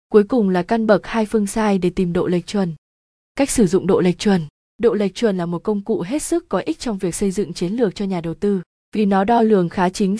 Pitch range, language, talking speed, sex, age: 185-230 Hz, Vietnamese, 270 wpm, female, 20-39